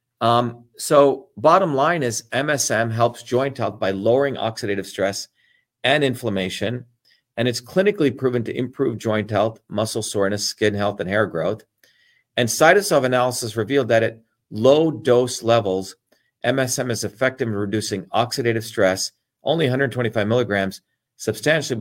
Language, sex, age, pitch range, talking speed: English, male, 40-59, 110-135 Hz, 140 wpm